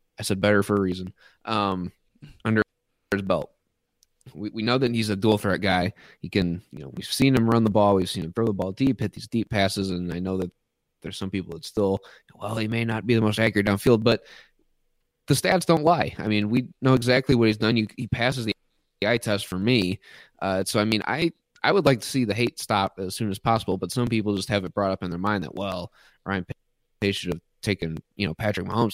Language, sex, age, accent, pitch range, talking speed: English, male, 20-39, American, 95-115 Hz, 245 wpm